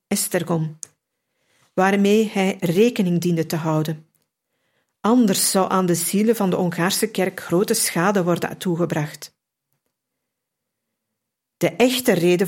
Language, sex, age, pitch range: Dutch, female, 50-69, 170-205 Hz